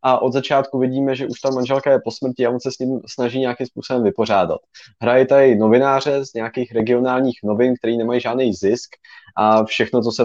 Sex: male